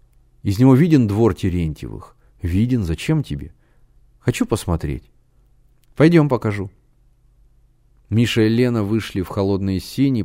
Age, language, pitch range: 30-49, Russian, 95-125 Hz